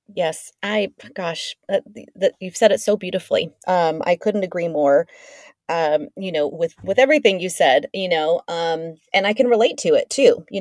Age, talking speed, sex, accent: 30-49, 190 wpm, female, American